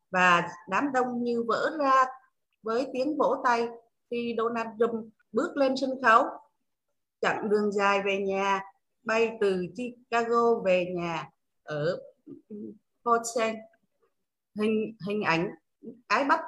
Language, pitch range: Vietnamese, 195-270 Hz